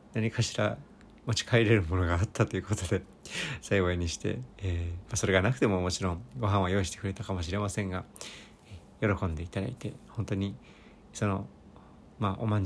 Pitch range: 100-115 Hz